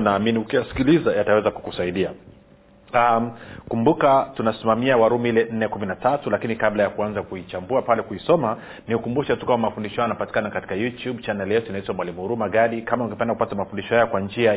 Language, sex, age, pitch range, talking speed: Swahili, male, 40-59, 100-125 Hz, 150 wpm